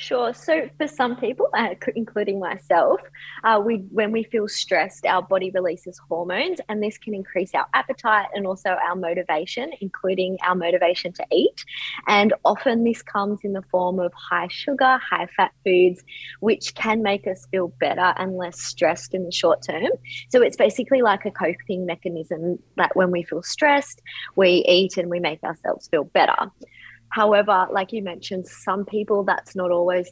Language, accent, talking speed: English, Australian, 175 wpm